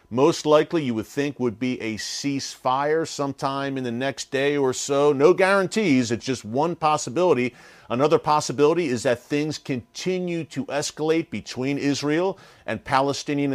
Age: 50-69